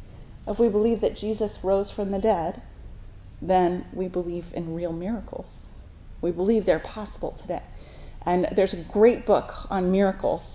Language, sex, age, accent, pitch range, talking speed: English, female, 30-49, American, 180-225 Hz, 155 wpm